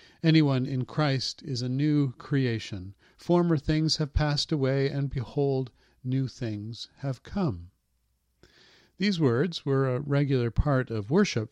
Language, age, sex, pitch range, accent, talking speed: English, 50-69, male, 115-155 Hz, American, 135 wpm